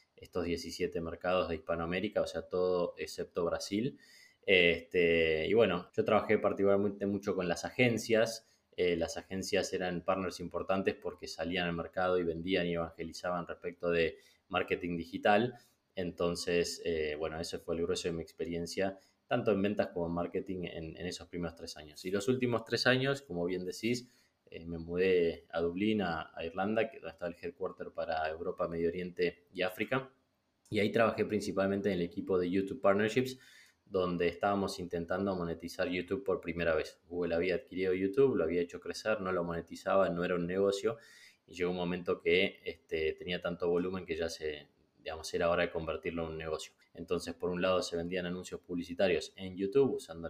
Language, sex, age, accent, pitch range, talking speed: Spanish, male, 20-39, Argentinian, 85-105 Hz, 180 wpm